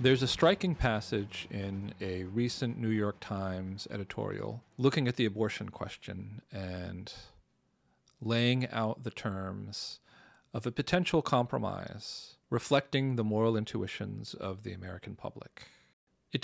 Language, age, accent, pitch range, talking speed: English, 40-59, American, 100-130 Hz, 125 wpm